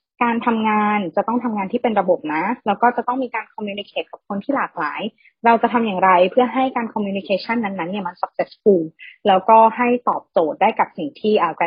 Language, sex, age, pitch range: Thai, female, 20-39, 185-245 Hz